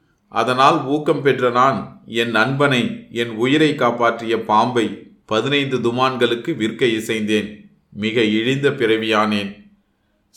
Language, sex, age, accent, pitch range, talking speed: Tamil, male, 30-49, native, 110-130 Hz, 100 wpm